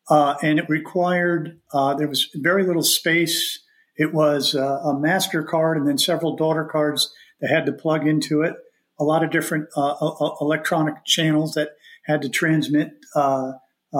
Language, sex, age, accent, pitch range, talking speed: English, male, 50-69, American, 150-175 Hz, 165 wpm